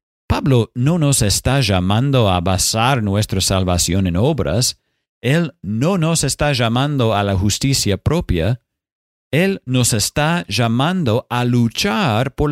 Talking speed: 130 wpm